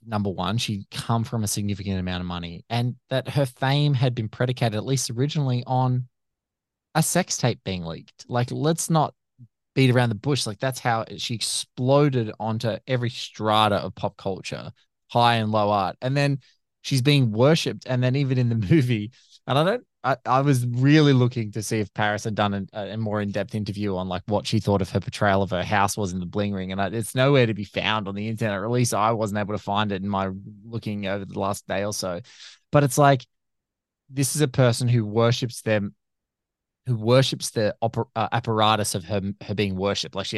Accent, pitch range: Australian, 100-125 Hz